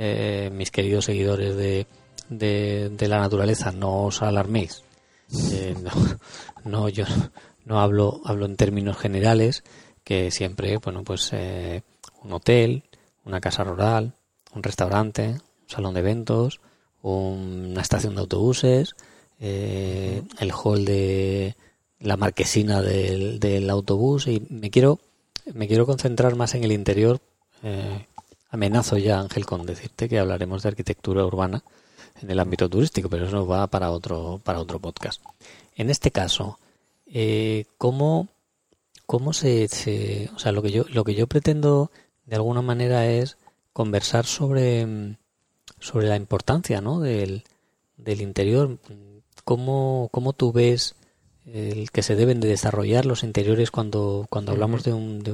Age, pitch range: 20-39, 100-120 Hz